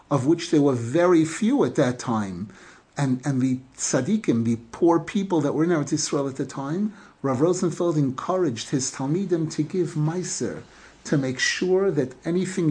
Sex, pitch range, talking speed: male, 150-200 Hz, 170 wpm